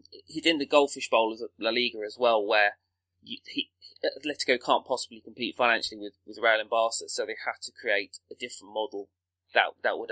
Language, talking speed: English, 200 wpm